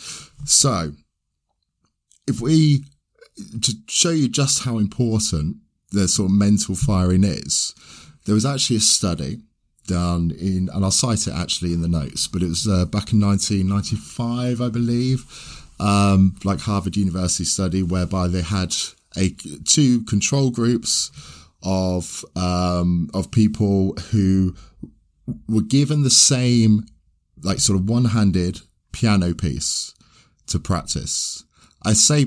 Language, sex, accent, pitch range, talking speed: English, male, British, 90-115 Hz, 130 wpm